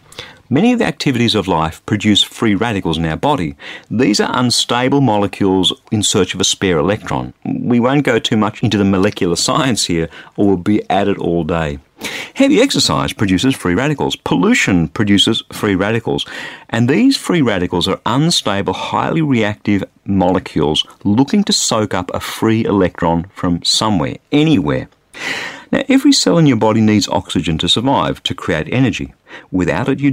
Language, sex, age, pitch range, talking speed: English, male, 50-69, 95-145 Hz, 165 wpm